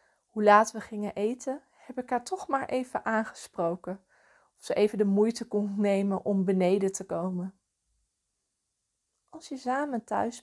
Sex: female